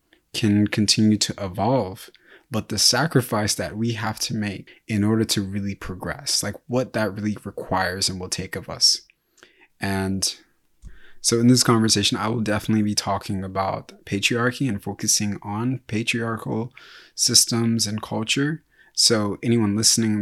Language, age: English, 20-39